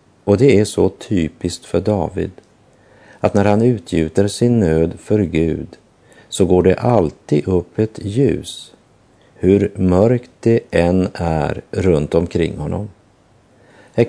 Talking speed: 130 wpm